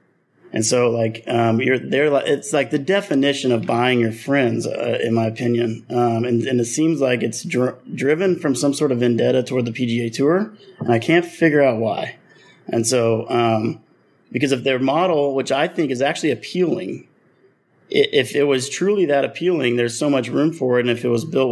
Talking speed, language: 205 wpm, English